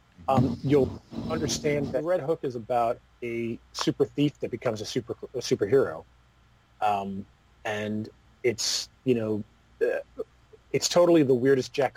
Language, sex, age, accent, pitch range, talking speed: English, male, 30-49, American, 105-130 Hz, 135 wpm